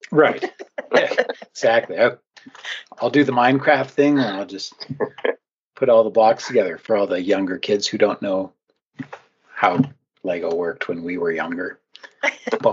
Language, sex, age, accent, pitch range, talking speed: English, male, 40-59, American, 100-135 Hz, 145 wpm